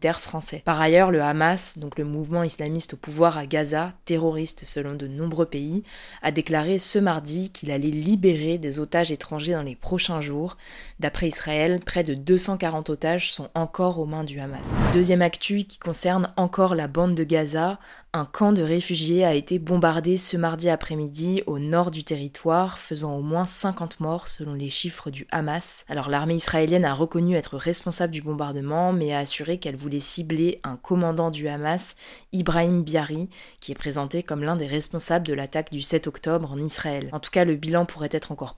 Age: 20-39